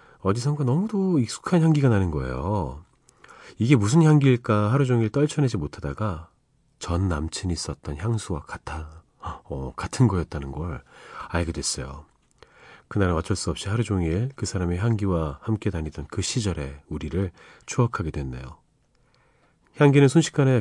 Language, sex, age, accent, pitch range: Korean, male, 40-59, native, 80-120 Hz